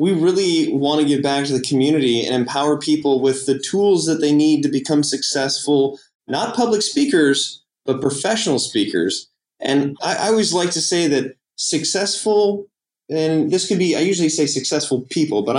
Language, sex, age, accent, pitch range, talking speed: English, male, 20-39, American, 135-170 Hz, 175 wpm